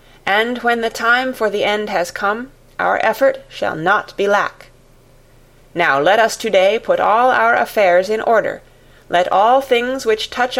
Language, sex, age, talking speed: English, female, 30-49, 170 wpm